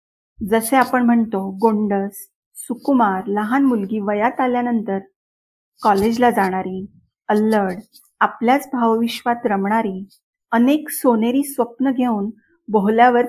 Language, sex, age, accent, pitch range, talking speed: Marathi, female, 40-59, native, 205-250 Hz, 90 wpm